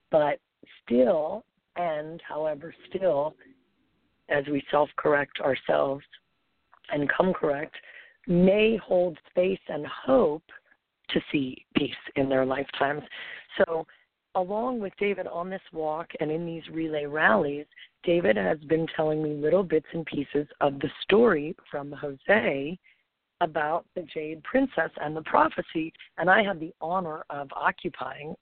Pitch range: 145-170 Hz